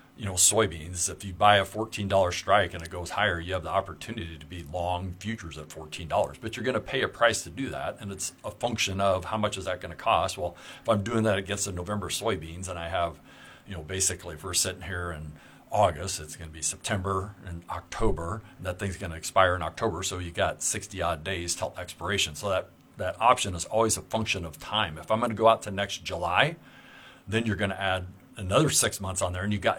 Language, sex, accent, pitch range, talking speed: English, male, American, 85-105 Hz, 245 wpm